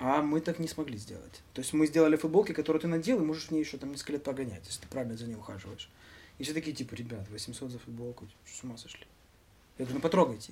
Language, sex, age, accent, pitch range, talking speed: Russian, male, 20-39, native, 115-155 Hz, 250 wpm